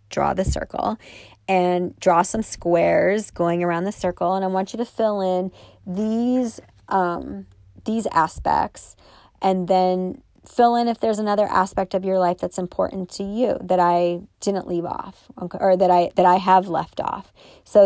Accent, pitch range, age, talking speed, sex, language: American, 175-195 Hz, 30-49, 170 wpm, female, English